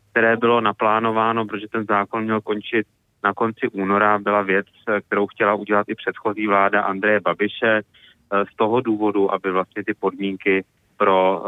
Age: 30-49